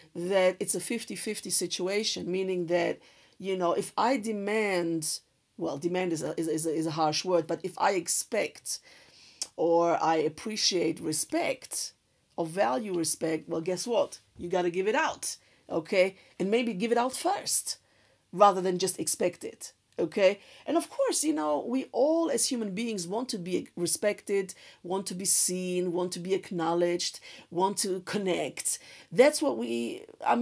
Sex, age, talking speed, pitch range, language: female, 50-69, 160 wpm, 175-225 Hz, English